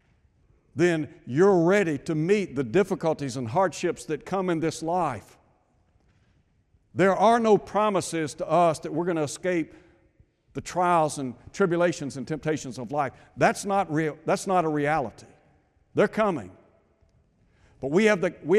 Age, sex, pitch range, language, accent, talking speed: 60-79, male, 115-175 Hz, English, American, 140 wpm